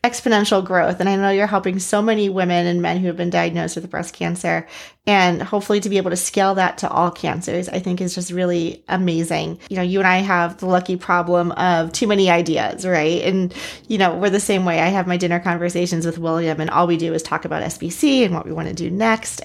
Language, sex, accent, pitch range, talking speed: English, female, American, 170-195 Hz, 245 wpm